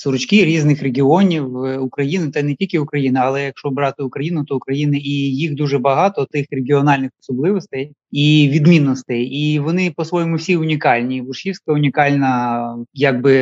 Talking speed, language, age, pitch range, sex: 140 wpm, Ukrainian, 20-39, 130-150 Hz, male